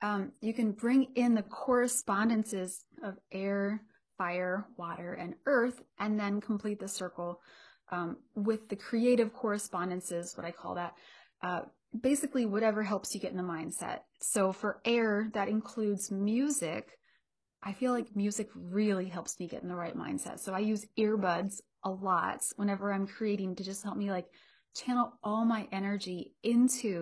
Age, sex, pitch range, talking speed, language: 30-49, female, 190-225 Hz, 160 wpm, English